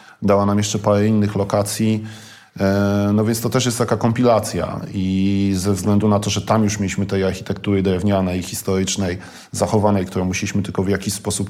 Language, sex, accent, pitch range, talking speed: Polish, male, native, 95-115 Hz, 170 wpm